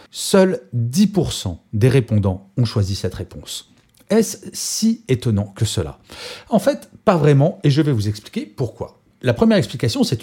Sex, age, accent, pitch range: male, 40-59, French, 110-175 Hz